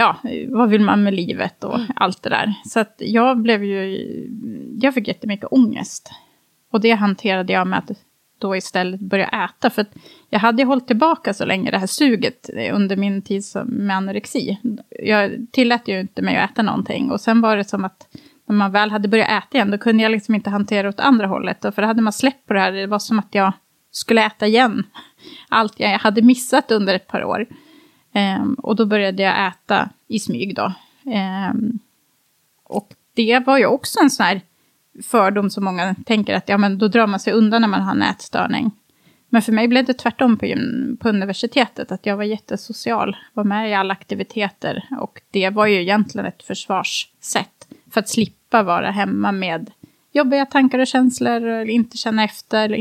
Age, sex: 30-49, female